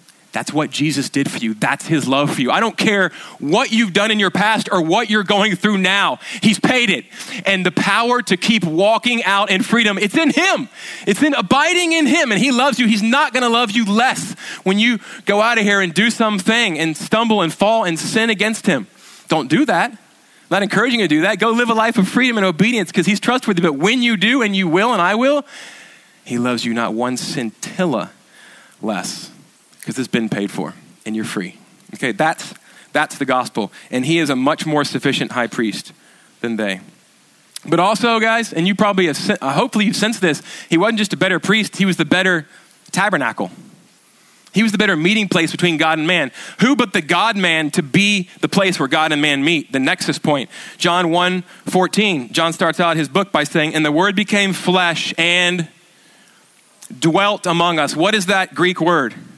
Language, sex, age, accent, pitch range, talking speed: English, male, 20-39, American, 165-225 Hz, 205 wpm